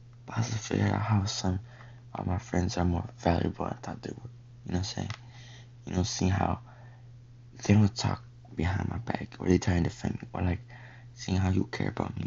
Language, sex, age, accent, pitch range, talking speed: English, male, 20-39, American, 100-120 Hz, 235 wpm